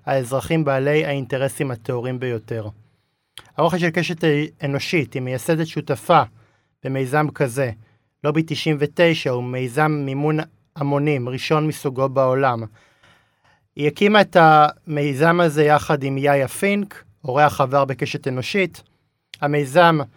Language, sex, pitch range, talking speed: Hebrew, male, 135-155 Hz, 115 wpm